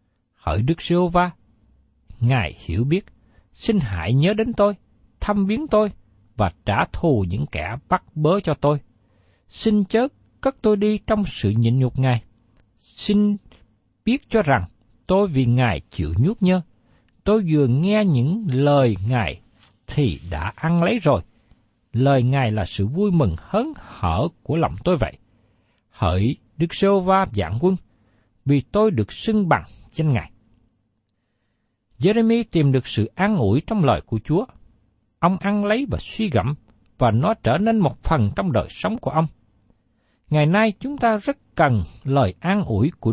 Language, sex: Vietnamese, male